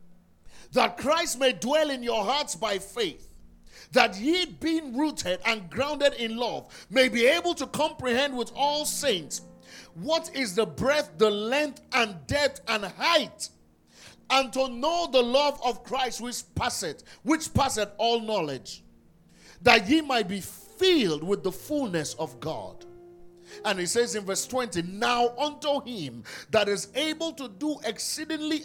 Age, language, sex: 50-69, English, male